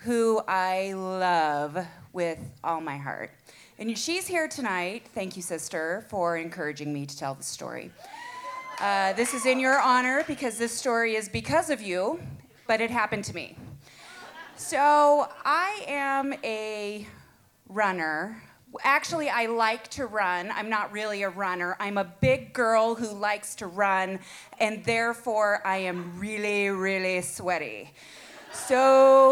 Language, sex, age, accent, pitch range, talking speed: English, female, 30-49, American, 195-275 Hz, 145 wpm